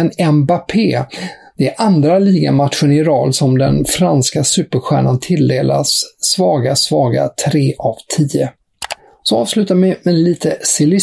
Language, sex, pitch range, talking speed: English, male, 135-165 Hz, 125 wpm